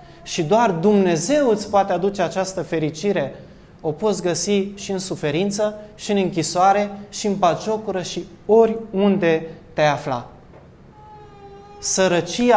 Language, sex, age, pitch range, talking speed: Romanian, male, 20-39, 170-225 Hz, 120 wpm